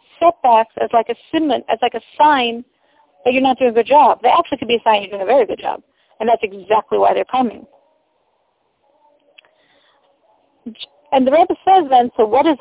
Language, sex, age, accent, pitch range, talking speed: English, female, 50-69, American, 230-330 Hz, 180 wpm